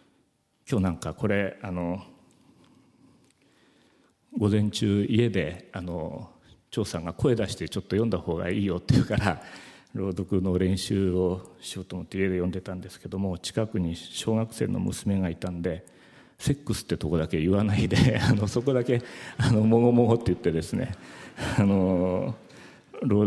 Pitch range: 90-110 Hz